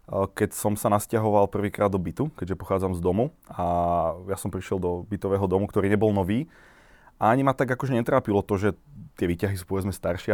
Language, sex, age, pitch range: Slovak, male, 20-39, 95-110 Hz